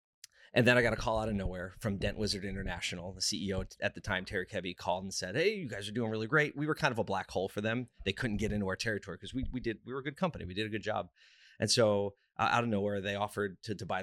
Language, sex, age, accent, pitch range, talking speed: English, male, 30-49, American, 95-115 Hz, 295 wpm